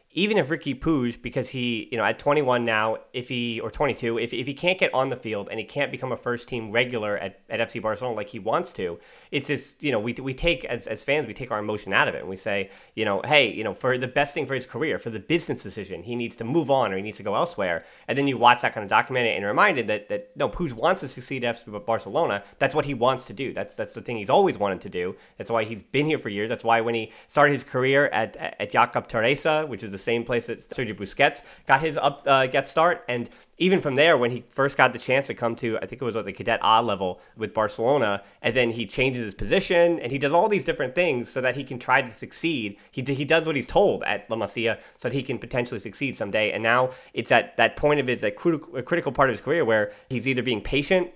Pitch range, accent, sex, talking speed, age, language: 115-145 Hz, American, male, 270 wpm, 30-49, English